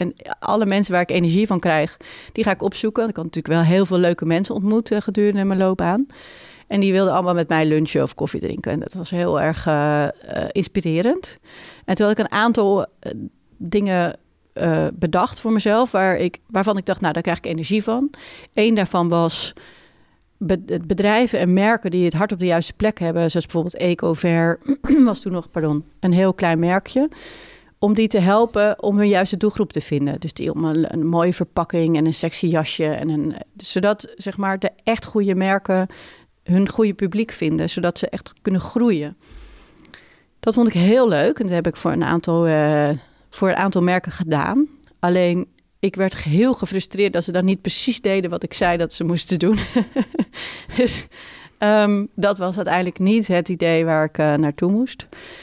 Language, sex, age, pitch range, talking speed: Dutch, female, 30-49, 170-210 Hz, 195 wpm